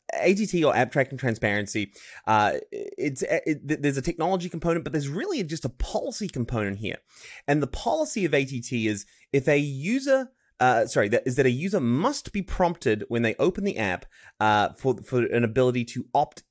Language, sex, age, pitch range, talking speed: English, male, 30-49, 115-155 Hz, 185 wpm